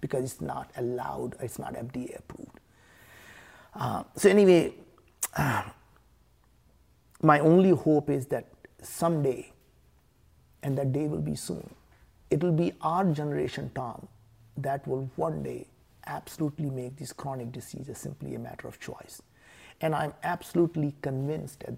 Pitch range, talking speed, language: 115-145 Hz, 135 wpm, English